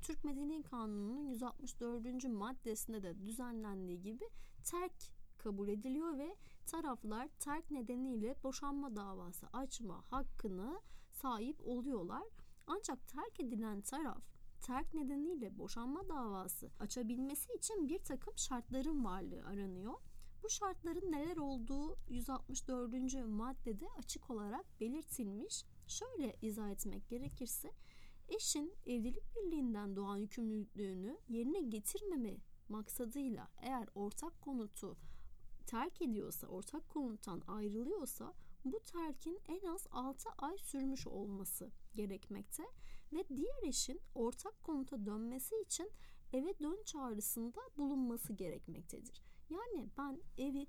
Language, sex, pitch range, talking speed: Turkish, female, 220-305 Hz, 105 wpm